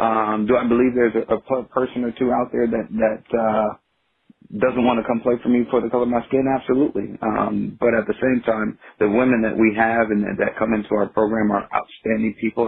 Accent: American